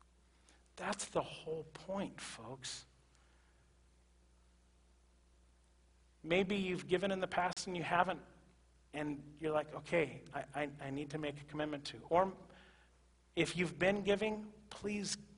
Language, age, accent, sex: English, 40-59, American, male